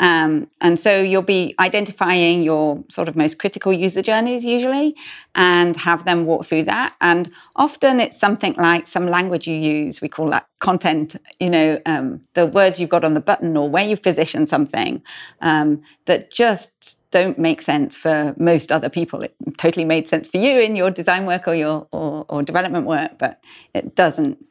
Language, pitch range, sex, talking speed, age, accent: English, 160-210 Hz, female, 190 wpm, 40-59, British